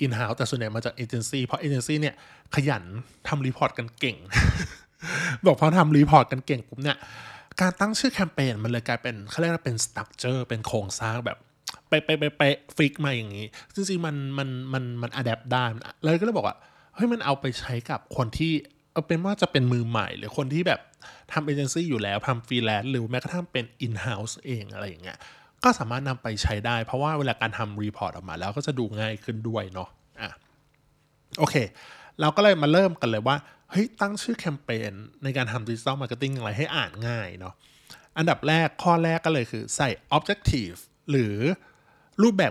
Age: 20-39